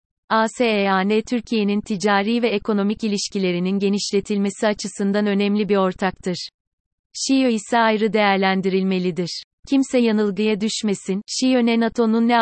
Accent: native